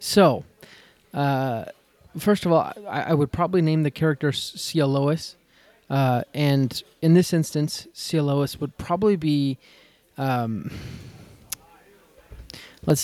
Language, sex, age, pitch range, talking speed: English, male, 20-39, 140-170 Hz, 115 wpm